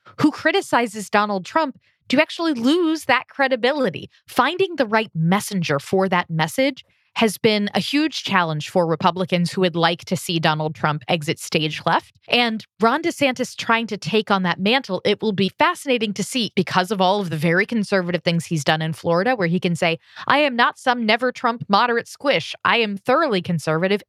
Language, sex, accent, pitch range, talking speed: English, female, American, 170-245 Hz, 190 wpm